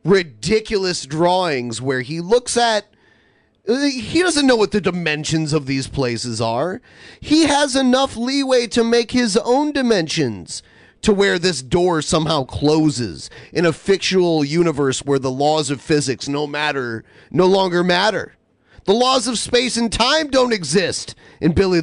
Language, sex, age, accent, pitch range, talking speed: English, male, 30-49, American, 145-220 Hz, 150 wpm